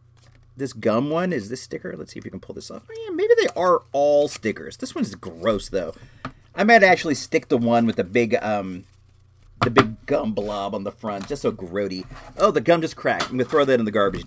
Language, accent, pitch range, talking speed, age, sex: English, American, 110-150 Hz, 230 wpm, 40-59, male